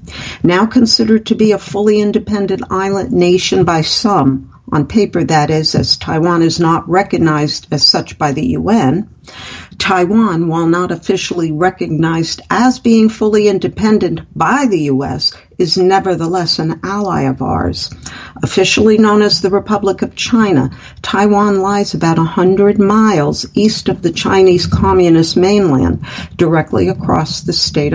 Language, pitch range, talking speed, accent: English, 165-215 Hz, 140 wpm, American